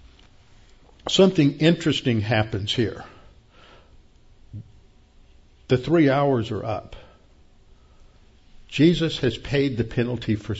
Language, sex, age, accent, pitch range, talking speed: English, male, 60-79, American, 115-150 Hz, 85 wpm